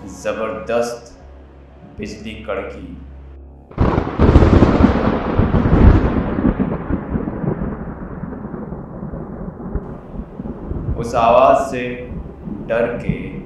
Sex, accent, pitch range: male, native, 70-115 Hz